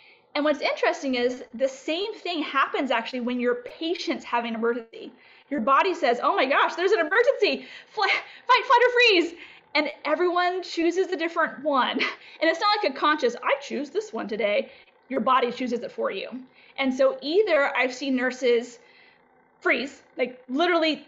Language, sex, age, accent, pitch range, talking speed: English, female, 20-39, American, 255-335 Hz, 170 wpm